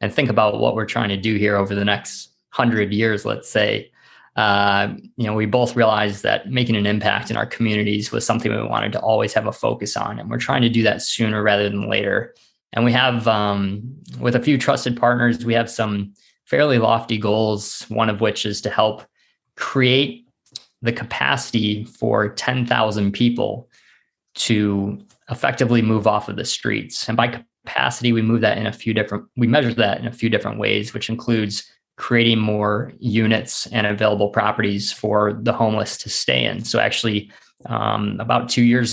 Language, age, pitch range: English, 20-39, 105-120 Hz